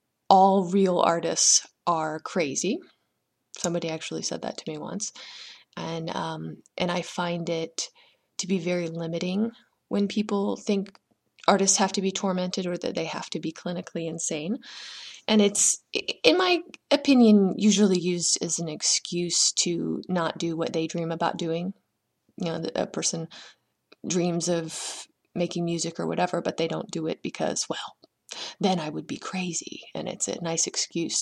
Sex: female